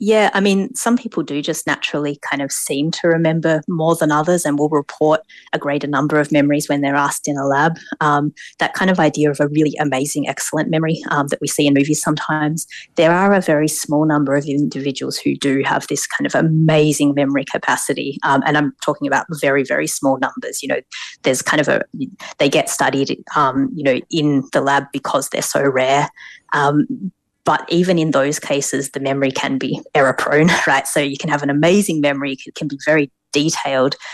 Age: 30-49